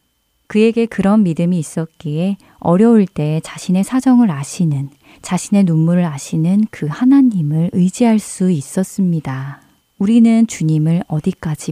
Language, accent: Korean, native